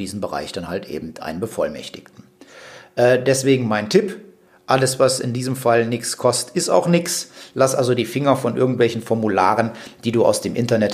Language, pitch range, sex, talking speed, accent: German, 110-130 Hz, male, 180 wpm, German